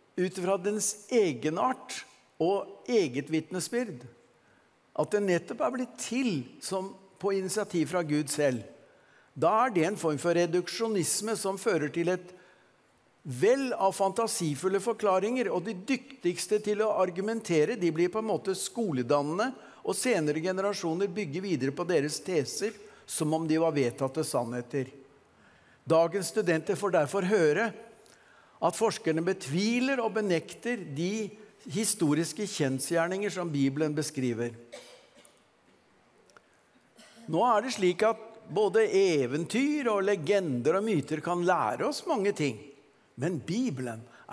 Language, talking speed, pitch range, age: English, 130 wpm, 155-215 Hz, 60-79